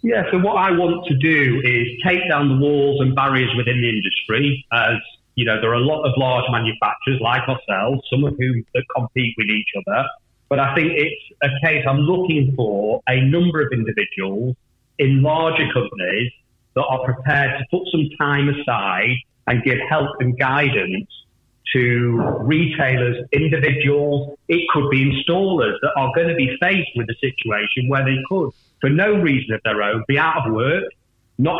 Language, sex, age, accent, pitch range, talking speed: English, male, 40-59, British, 125-150 Hz, 180 wpm